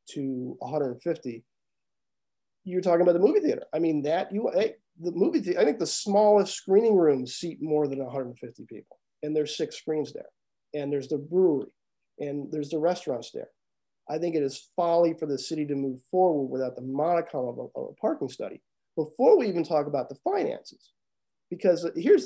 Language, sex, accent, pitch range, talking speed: English, male, American, 140-180 Hz, 185 wpm